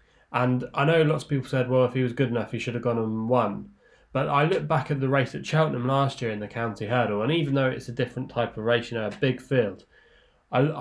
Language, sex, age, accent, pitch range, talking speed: English, male, 20-39, British, 110-125 Hz, 270 wpm